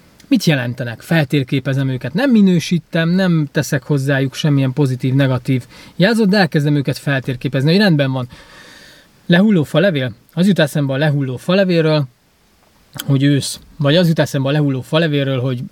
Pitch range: 135-170 Hz